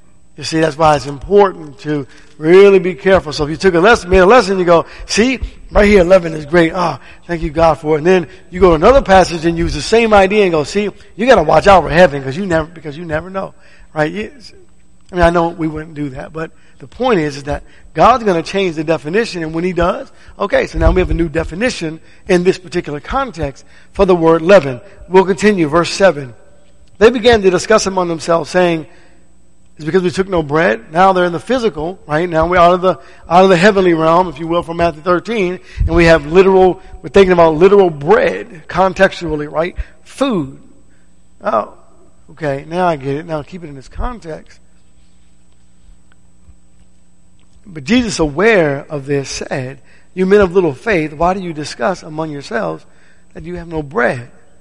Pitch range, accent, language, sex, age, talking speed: 155-190 Hz, American, English, male, 50-69, 205 wpm